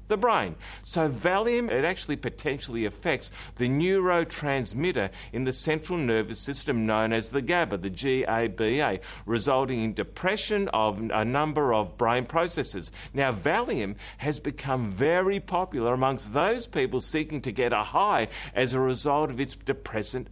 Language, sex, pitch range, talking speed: English, male, 110-160 Hz, 150 wpm